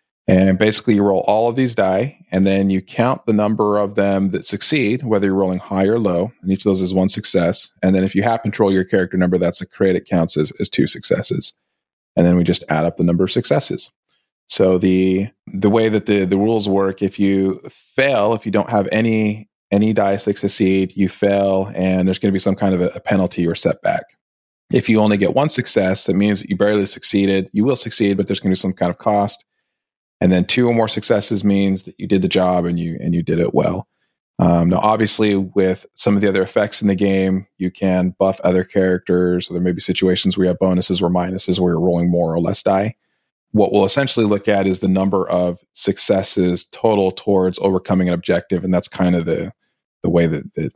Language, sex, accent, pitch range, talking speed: English, male, American, 90-105 Hz, 230 wpm